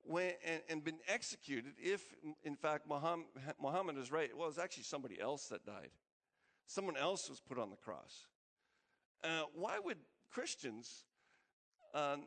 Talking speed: 150 wpm